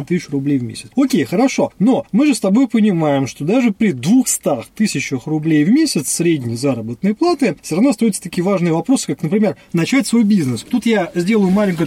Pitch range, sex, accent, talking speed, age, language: 160-225 Hz, male, native, 195 wpm, 20-39, Russian